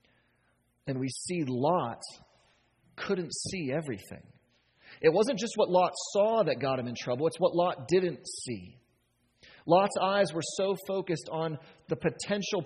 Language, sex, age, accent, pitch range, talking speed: English, male, 30-49, American, 140-195 Hz, 145 wpm